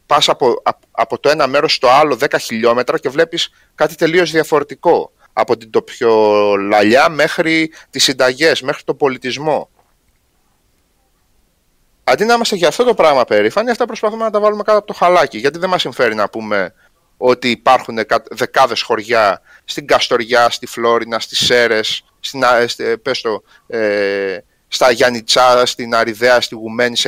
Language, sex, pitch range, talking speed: Greek, male, 120-185 Hz, 150 wpm